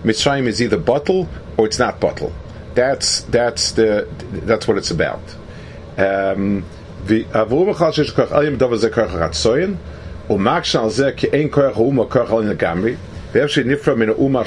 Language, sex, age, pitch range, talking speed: English, male, 50-69, 100-140 Hz, 165 wpm